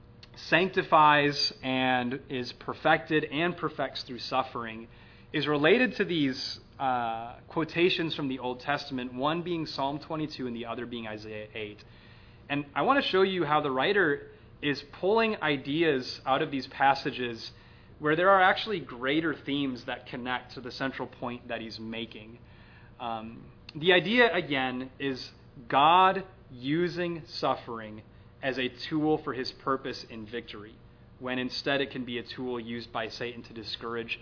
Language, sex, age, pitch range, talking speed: English, male, 30-49, 115-145 Hz, 155 wpm